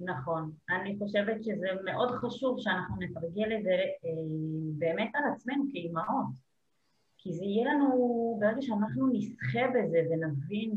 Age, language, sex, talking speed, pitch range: 30-49, Hebrew, female, 135 wpm, 175-240 Hz